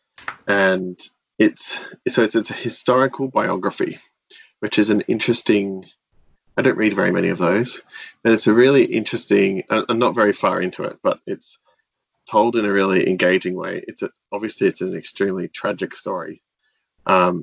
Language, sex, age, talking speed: English, male, 20-39, 160 wpm